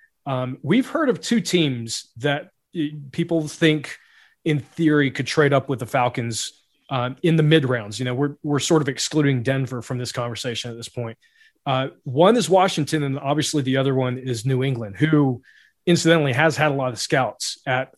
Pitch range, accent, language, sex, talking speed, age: 130-170 Hz, American, English, male, 190 wpm, 30-49